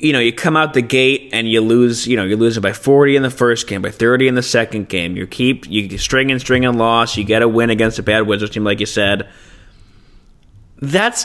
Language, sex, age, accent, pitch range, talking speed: English, male, 20-39, American, 115-155 Hz, 245 wpm